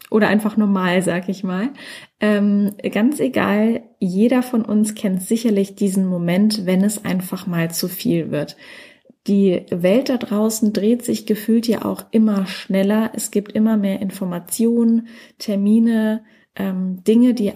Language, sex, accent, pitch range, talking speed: German, female, German, 185-220 Hz, 145 wpm